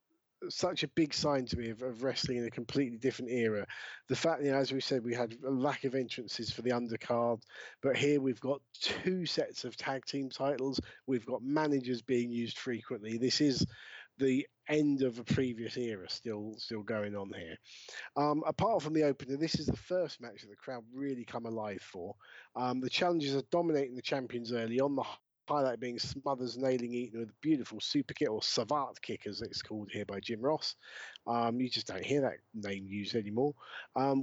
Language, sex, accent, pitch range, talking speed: English, male, British, 120-145 Hz, 205 wpm